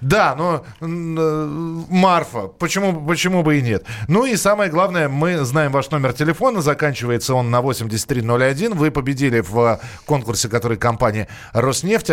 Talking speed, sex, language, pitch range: 140 wpm, male, Russian, 120-155 Hz